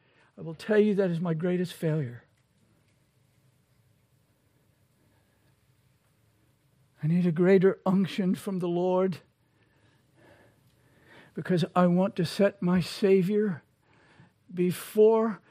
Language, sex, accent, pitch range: English, male, American, 135-180 Hz